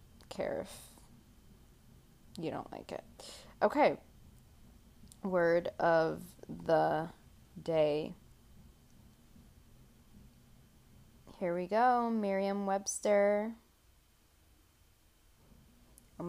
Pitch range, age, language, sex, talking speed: 165-230 Hz, 10-29, English, female, 60 wpm